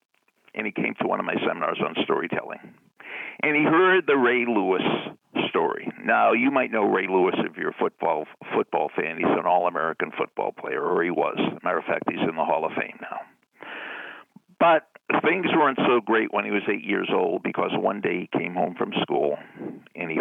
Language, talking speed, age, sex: English, 205 wpm, 50-69, male